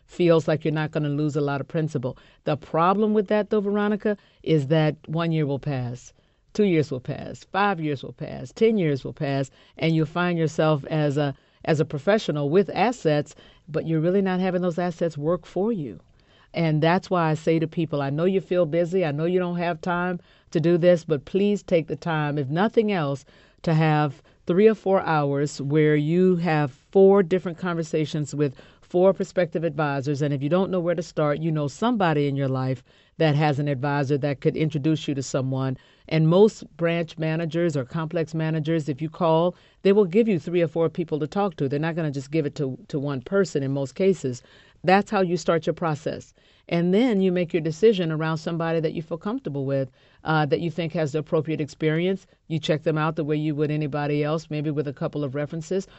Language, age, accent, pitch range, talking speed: English, 50-69, American, 150-180 Hz, 220 wpm